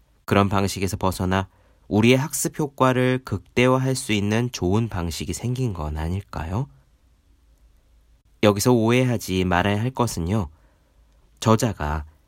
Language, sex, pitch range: Korean, male, 85-125 Hz